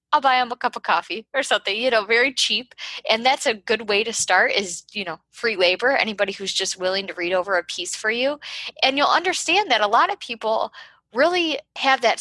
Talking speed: 230 wpm